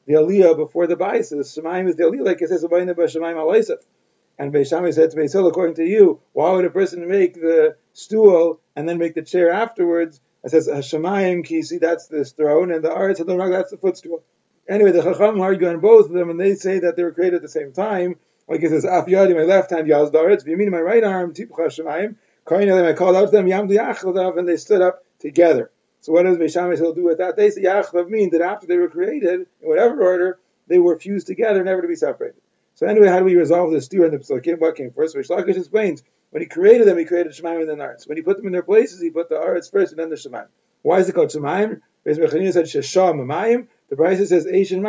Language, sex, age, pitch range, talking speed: English, male, 30-49, 165-200 Hz, 230 wpm